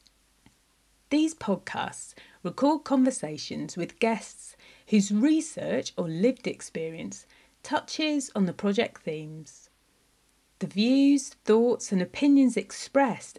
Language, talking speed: English, 100 wpm